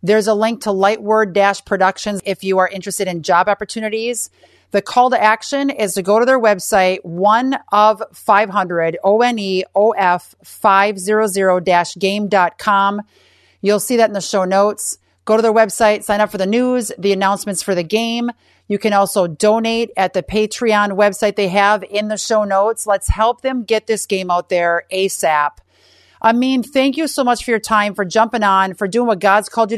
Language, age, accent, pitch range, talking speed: English, 40-59, American, 200-235 Hz, 175 wpm